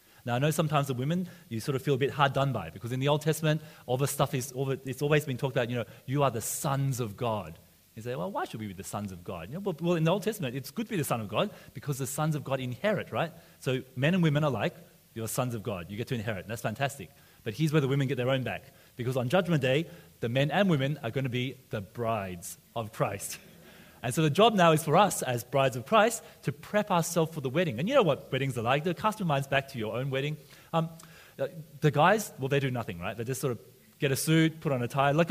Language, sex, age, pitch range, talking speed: English, male, 30-49, 125-175 Hz, 285 wpm